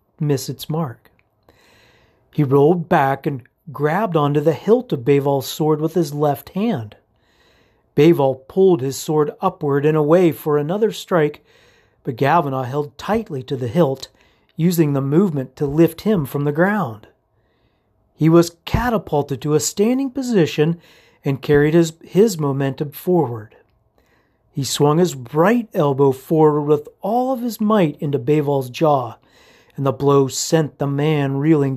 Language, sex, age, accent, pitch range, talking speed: English, male, 40-59, American, 135-170 Hz, 145 wpm